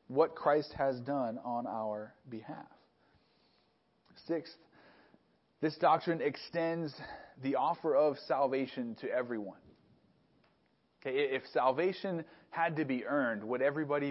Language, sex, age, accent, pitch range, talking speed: English, male, 30-49, American, 130-160 Hz, 105 wpm